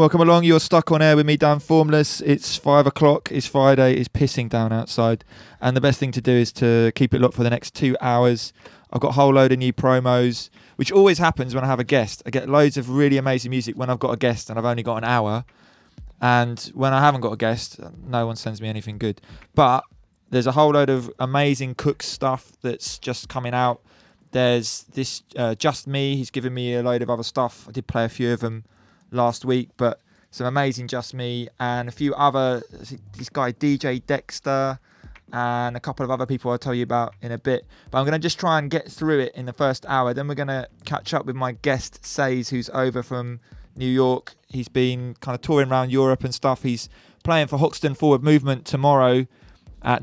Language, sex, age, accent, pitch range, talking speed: English, male, 20-39, British, 120-140 Hz, 225 wpm